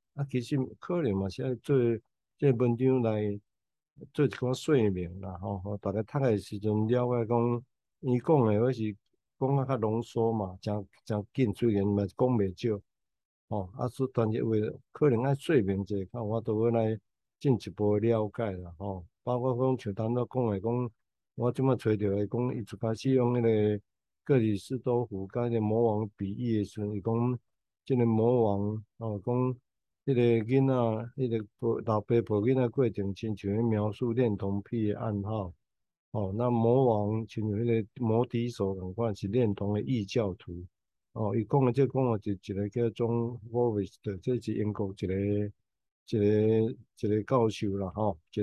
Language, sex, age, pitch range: Chinese, male, 60-79, 100-125 Hz